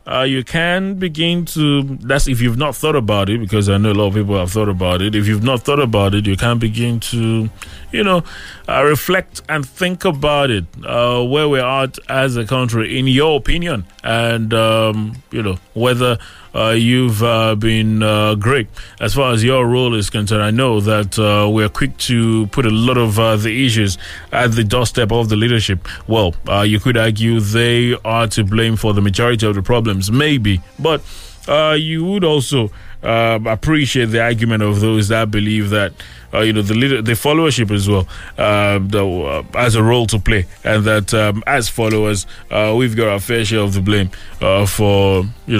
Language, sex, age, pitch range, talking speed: English, male, 20-39, 100-125 Hz, 205 wpm